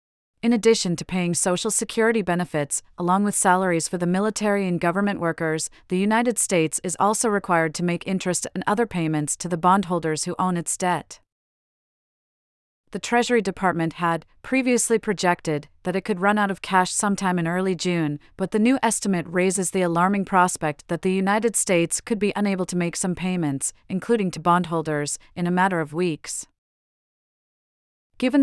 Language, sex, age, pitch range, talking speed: English, female, 30-49, 170-205 Hz, 170 wpm